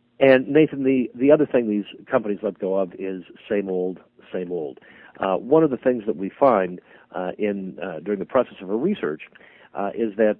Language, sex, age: English, male, 50-69